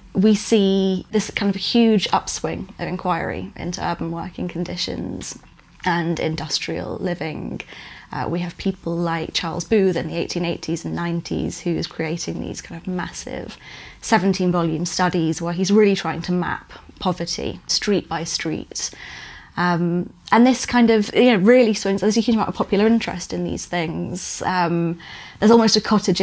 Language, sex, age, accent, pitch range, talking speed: English, female, 20-39, British, 170-195 Hz, 160 wpm